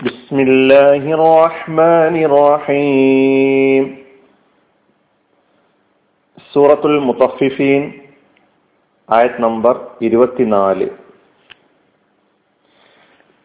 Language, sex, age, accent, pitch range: Malayalam, male, 40-59, native, 120-145 Hz